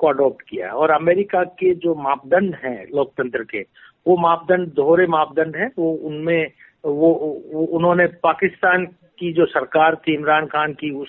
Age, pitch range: 50-69, 145-180 Hz